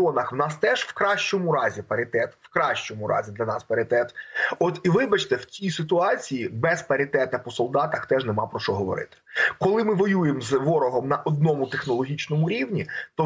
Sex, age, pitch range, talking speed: male, 20-39, 135-190 Hz, 170 wpm